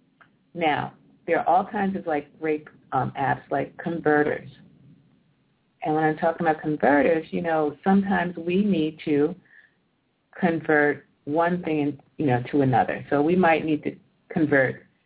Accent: American